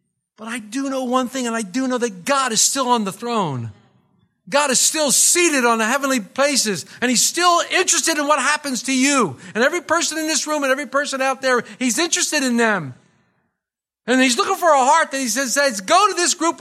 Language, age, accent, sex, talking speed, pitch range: English, 50-69, American, male, 230 wpm, 225-290 Hz